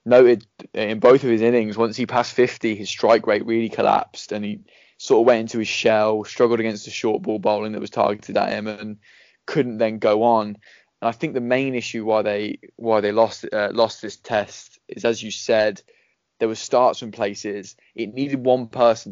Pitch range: 105-120 Hz